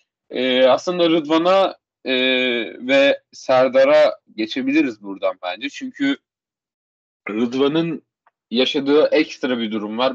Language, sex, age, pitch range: Turkish, male, 30-49, 120-175 Hz